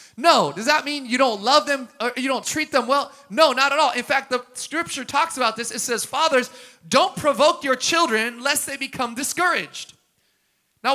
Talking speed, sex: 205 wpm, male